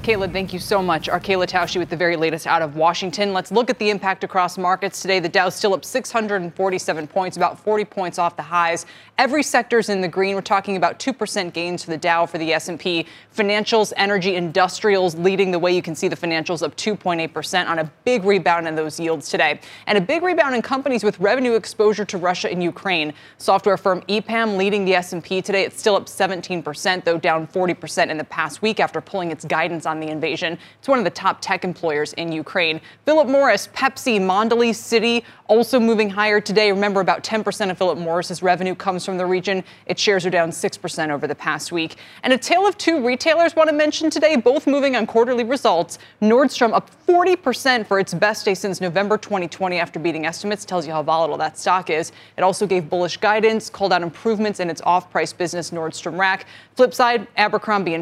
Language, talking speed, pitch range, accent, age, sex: English, 210 wpm, 170-215 Hz, American, 20-39, female